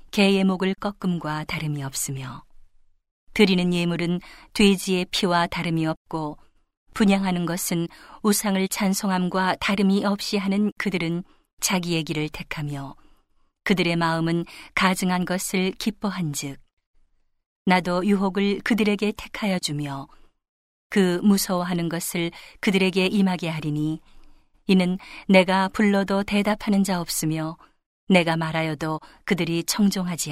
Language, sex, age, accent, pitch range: Korean, female, 40-59, native, 165-195 Hz